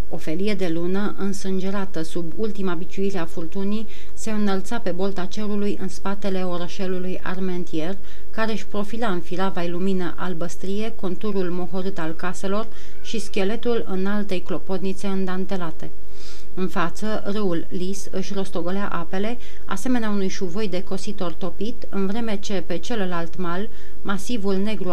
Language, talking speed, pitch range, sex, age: Romanian, 135 wpm, 180-205 Hz, female, 40-59